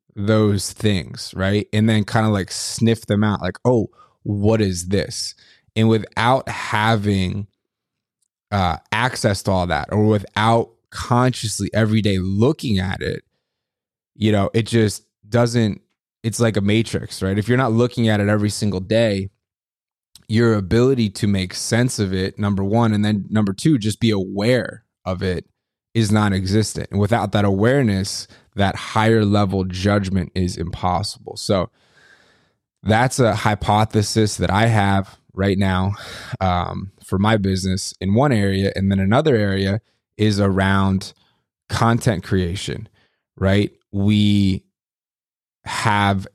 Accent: American